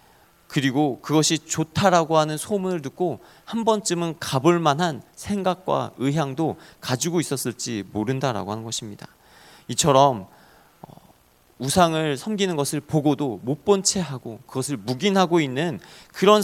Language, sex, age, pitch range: Korean, male, 40-59, 115-160 Hz